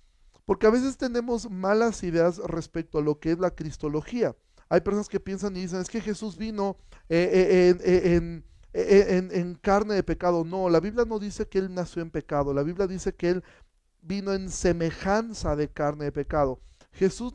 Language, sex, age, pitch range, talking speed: Spanish, male, 40-59, 155-195 Hz, 195 wpm